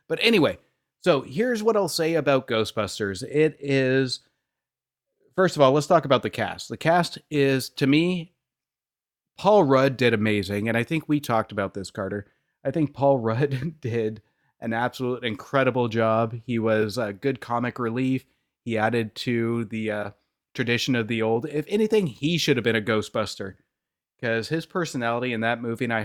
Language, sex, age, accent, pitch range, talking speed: English, male, 30-49, American, 110-140 Hz, 175 wpm